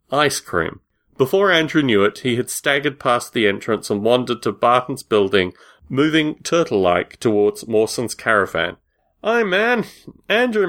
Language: English